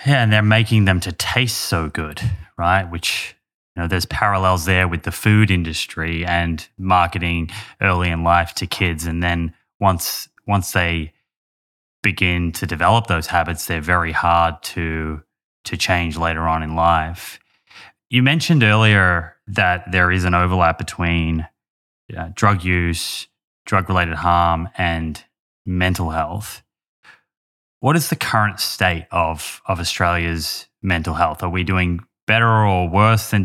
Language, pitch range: English, 85-100 Hz